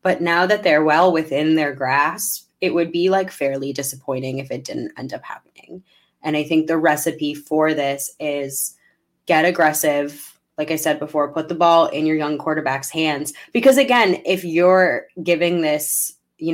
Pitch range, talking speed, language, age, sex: 145-170 Hz, 180 wpm, English, 10-29, female